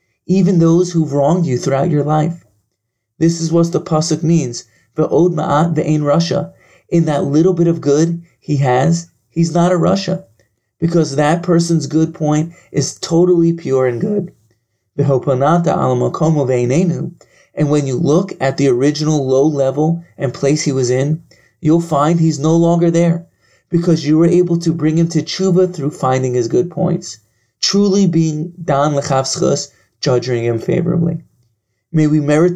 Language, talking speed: English, 155 wpm